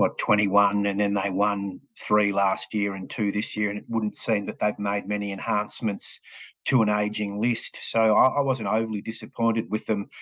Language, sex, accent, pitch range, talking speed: English, male, Australian, 105-130 Hz, 200 wpm